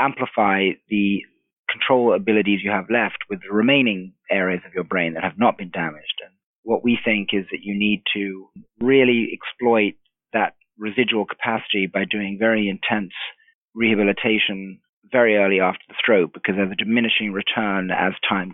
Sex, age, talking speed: male, 40-59, 160 wpm